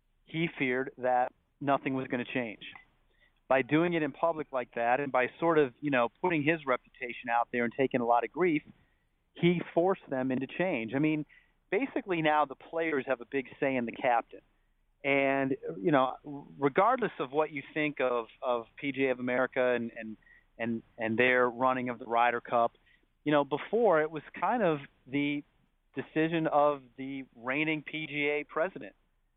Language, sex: English, male